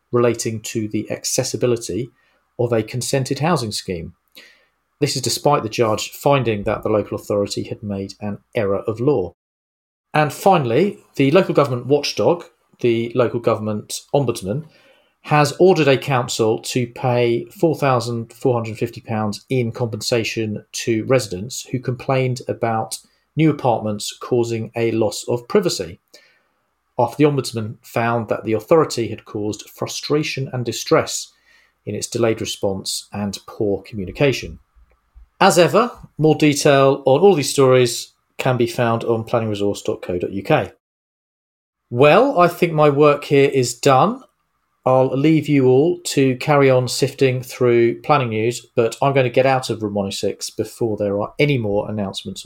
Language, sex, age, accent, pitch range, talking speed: English, male, 40-59, British, 110-140 Hz, 140 wpm